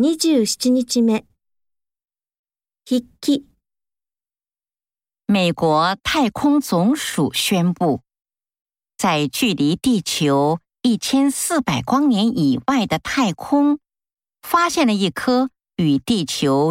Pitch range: 165-270 Hz